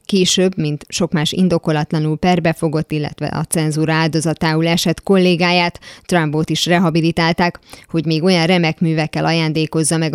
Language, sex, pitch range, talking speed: Hungarian, female, 155-180 Hz, 130 wpm